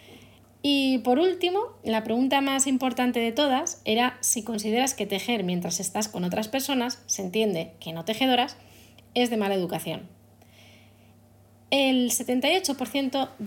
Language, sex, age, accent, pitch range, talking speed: Spanish, female, 20-39, Spanish, 185-245 Hz, 135 wpm